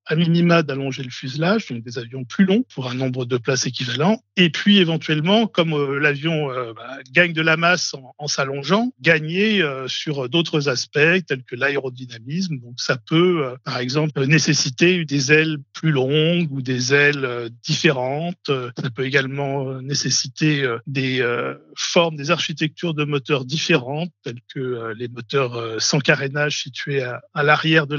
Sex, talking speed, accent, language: male, 150 wpm, French, French